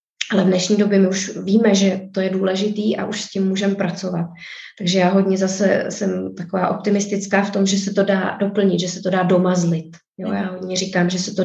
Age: 20-39